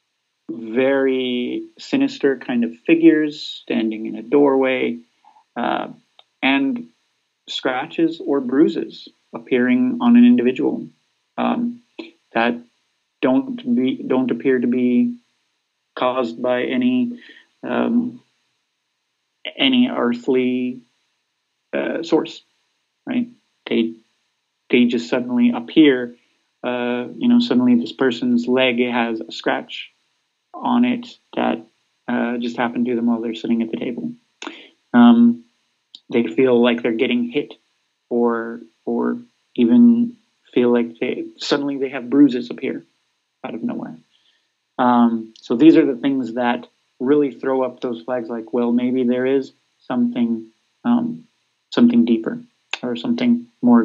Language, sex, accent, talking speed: English, male, American, 120 wpm